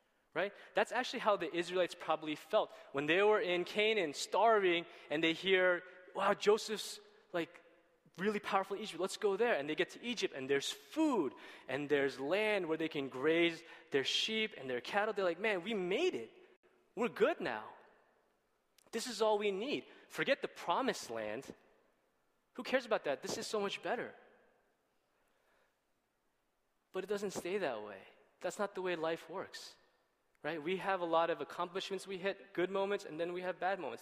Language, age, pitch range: Korean, 20-39, 170-220 Hz